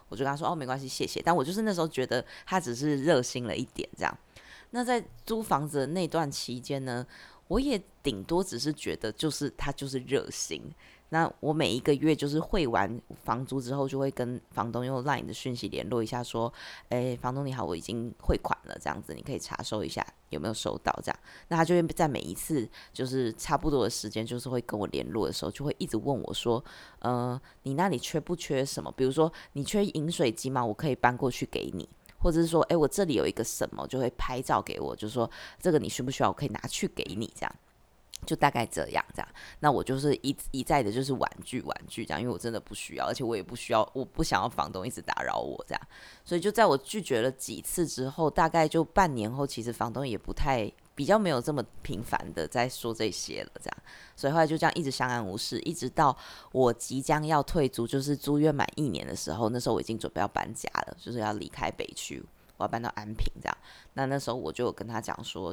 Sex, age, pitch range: female, 20-39, 120-155 Hz